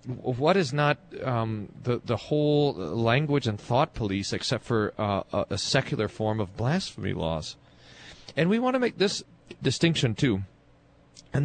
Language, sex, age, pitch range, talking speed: English, male, 40-59, 110-145 Hz, 155 wpm